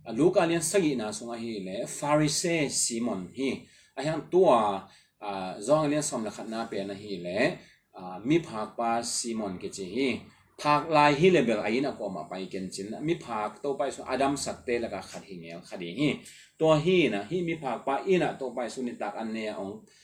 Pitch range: 100-140 Hz